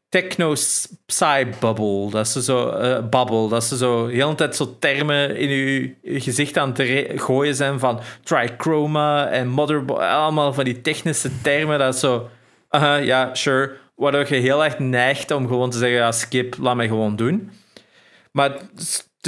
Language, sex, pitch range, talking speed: Dutch, male, 115-145 Hz, 175 wpm